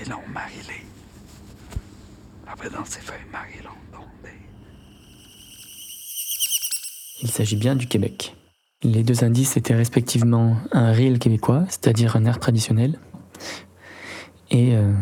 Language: French